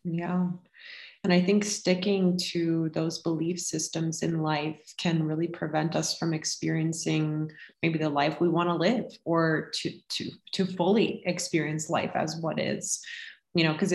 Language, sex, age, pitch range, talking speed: English, female, 20-39, 165-195 Hz, 160 wpm